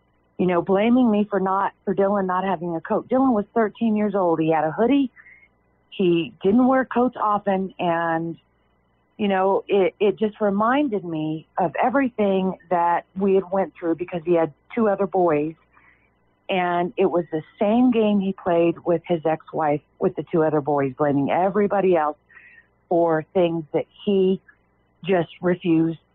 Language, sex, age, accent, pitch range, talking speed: English, female, 40-59, American, 170-220 Hz, 170 wpm